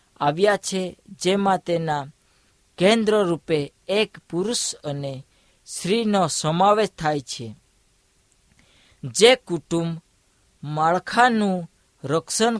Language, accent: Hindi, native